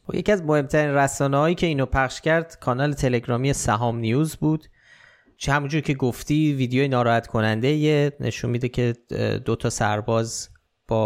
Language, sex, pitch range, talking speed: Persian, male, 110-140 Hz, 145 wpm